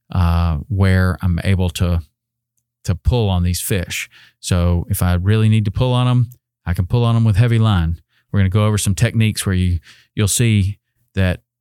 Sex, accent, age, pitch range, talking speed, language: male, American, 40-59, 100-120 Hz, 200 wpm, English